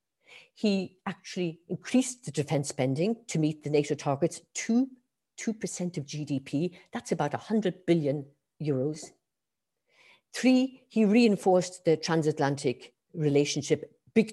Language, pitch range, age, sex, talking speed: English, 145-200 Hz, 50-69, female, 115 wpm